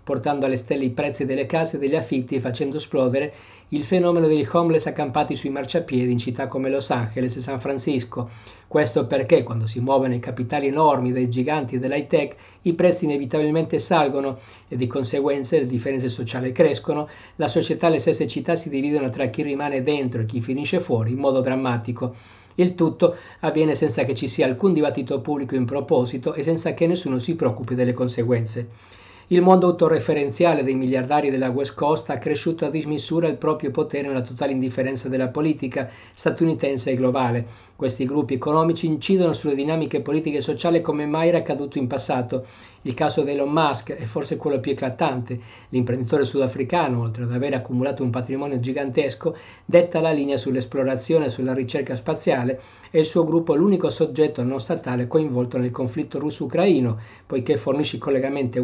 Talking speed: 175 wpm